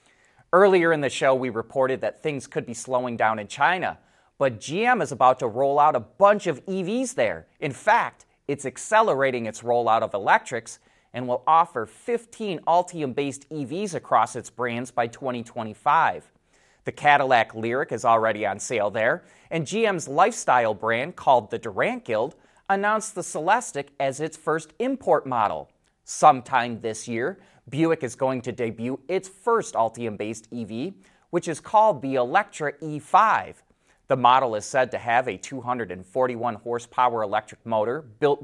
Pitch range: 120-160 Hz